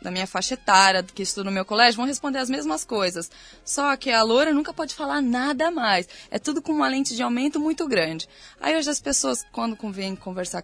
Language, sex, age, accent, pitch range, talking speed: Portuguese, female, 10-29, Brazilian, 215-290 Hz, 220 wpm